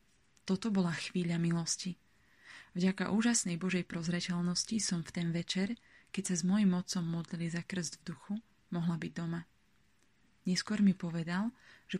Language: Slovak